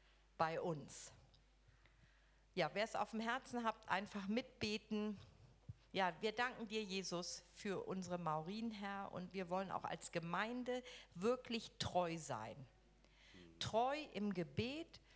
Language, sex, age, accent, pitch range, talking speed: English, female, 50-69, German, 180-225 Hz, 125 wpm